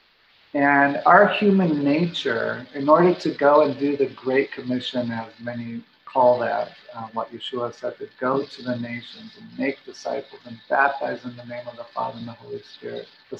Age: 50-69